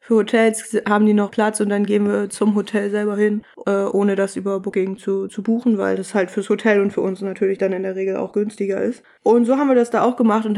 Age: 20-39